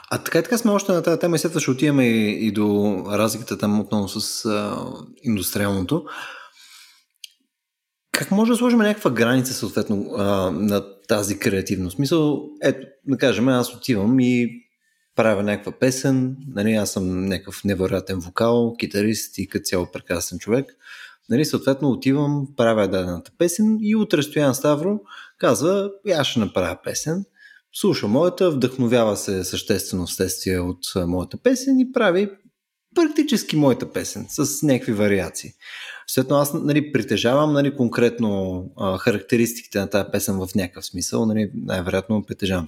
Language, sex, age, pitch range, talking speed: Bulgarian, male, 20-39, 100-145 Hz, 145 wpm